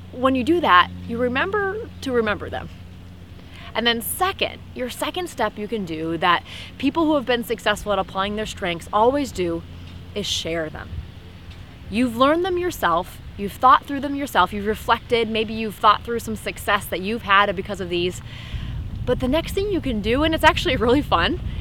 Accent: American